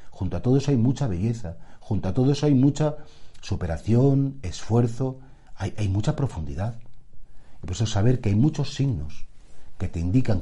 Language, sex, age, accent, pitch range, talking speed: Spanish, male, 40-59, Spanish, 95-130 Hz, 175 wpm